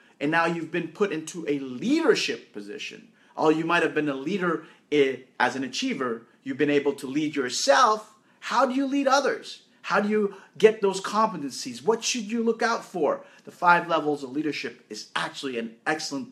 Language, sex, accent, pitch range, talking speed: English, male, American, 145-230 Hz, 190 wpm